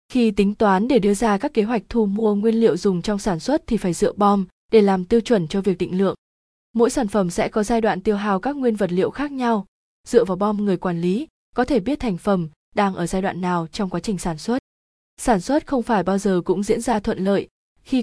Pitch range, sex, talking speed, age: 190-235 Hz, female, 255 wpm, 20-39